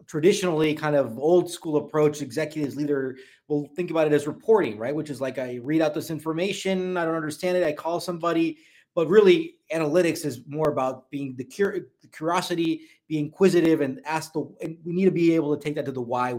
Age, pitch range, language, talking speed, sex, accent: 30-49, 145-185 Hz, English, 210 wpm, male, American